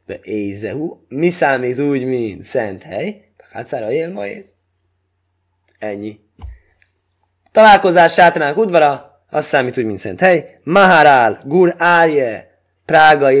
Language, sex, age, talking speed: Hungarian, male, 20-39, 100 wpm